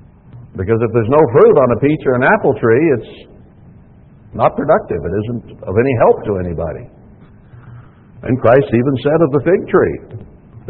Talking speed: 175 wpm